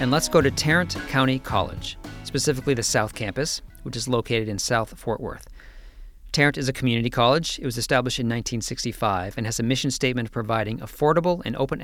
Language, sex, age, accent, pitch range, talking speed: English, male, 40-59, American, 105-135 Hz, 195 wpm